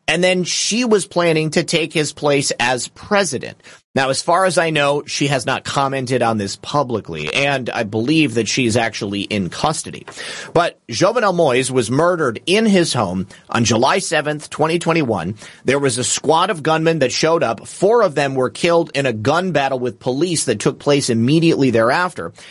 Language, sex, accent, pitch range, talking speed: English, male, American, 125-170 Hz, 185 wpm